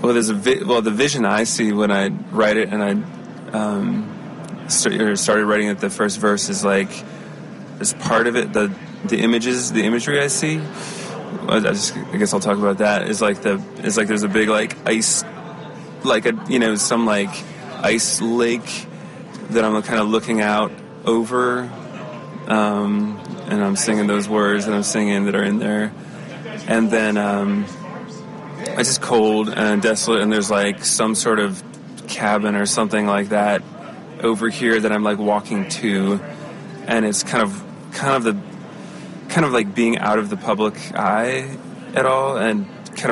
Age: 20-39